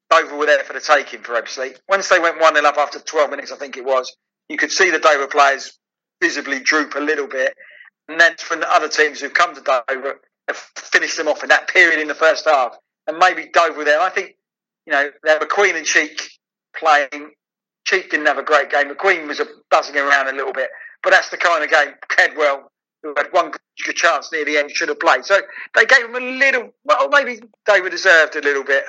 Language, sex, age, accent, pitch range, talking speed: English, male, 40-59, British, 145-195 Hz, 235 wpm